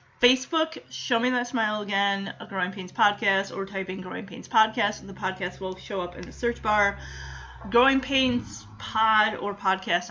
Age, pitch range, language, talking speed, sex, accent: 30-49, 190-230 Hz, English, 180 wpm, female, American